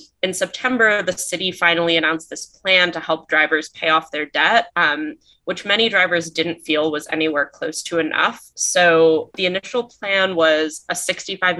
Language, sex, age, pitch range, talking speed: English, female, 20-39, 155-185 Hz, 170 wpm